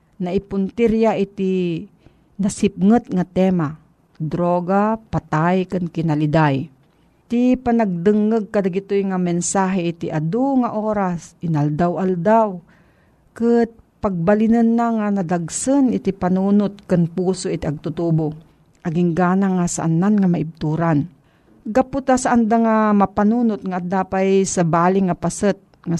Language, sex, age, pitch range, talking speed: Filipino, female, 50-69, 170-210 Hz, 105 wpm